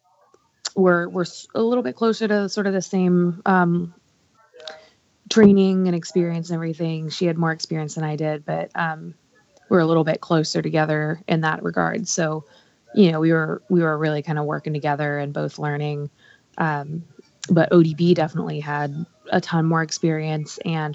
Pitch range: 150-175 Hz